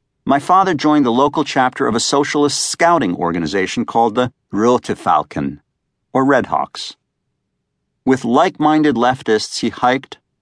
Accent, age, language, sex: American, 50-69, English, male